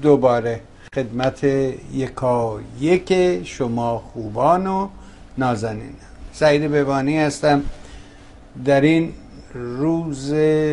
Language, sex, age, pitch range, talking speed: Persian, male, 60-79, 110-145 Hz, 75 wpm